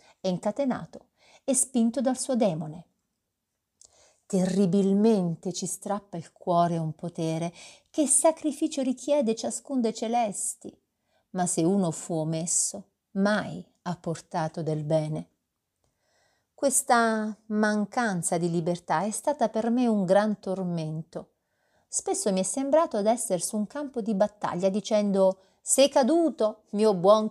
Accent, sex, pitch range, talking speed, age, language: native, female, 180-235 Hz, 125 wpm, 40-59, Italian